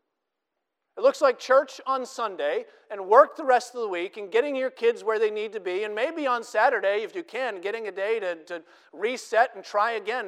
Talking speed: 220 wpm